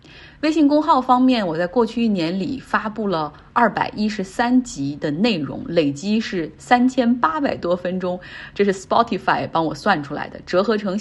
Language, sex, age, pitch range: Chinese, female, 20-39, 175-240 Hz